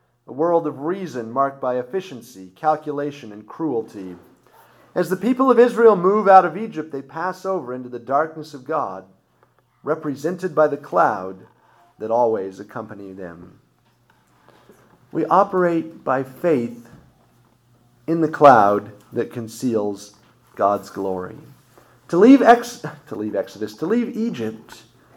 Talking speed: 125 wpm